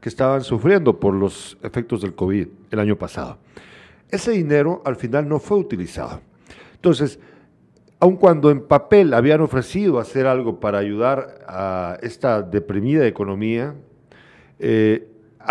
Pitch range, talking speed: 115-175 Hz, 130 wpm